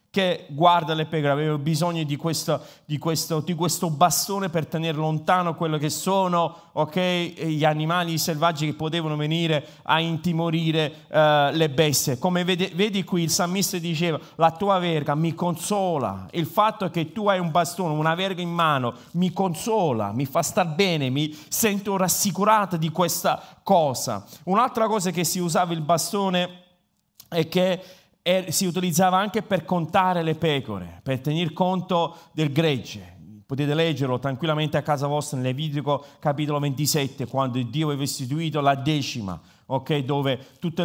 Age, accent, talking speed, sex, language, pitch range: 30-49, native, 155 wpm, male, Italian, 150-180 Hz